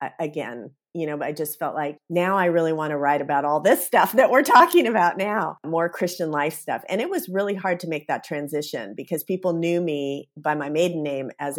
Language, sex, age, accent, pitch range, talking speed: English, female, 40-59, American, 150-175 Hz, 230 wpm